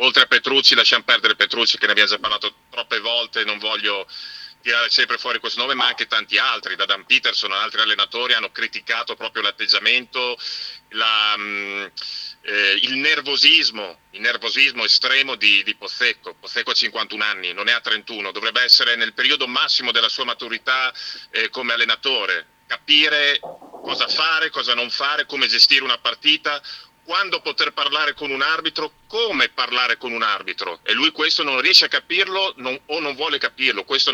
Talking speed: 170 wpm